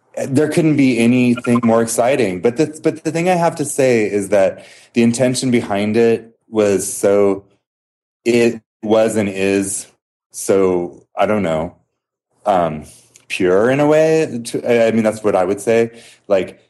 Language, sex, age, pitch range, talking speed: English, male, 30-49, 95-120 Hz, 160 wpm